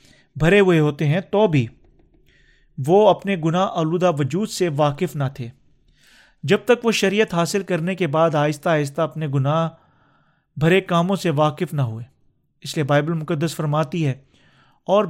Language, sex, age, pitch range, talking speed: Urdu, male, 40-59, 150-195 Hz, 160 wpm